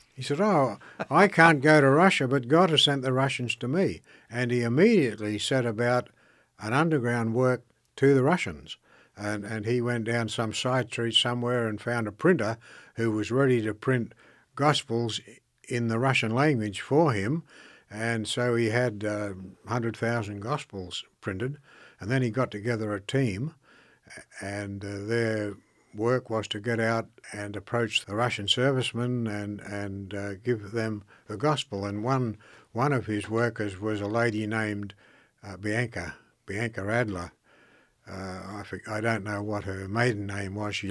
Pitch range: 105-125 Hz